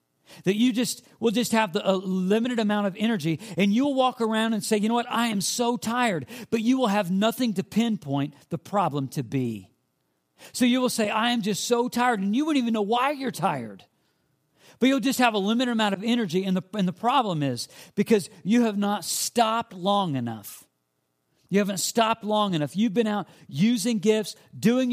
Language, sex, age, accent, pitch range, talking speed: English, male, 50-69, American, 150-220 Hz, 200 wpm